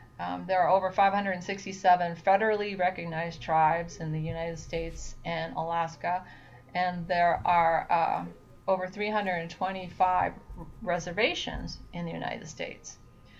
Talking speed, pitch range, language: 110 wpm, 175-200 Hz, English